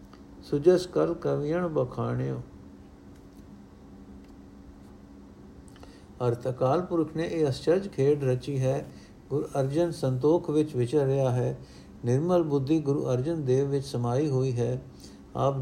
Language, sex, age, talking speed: Punjabi, male, 60-79, 110 wpm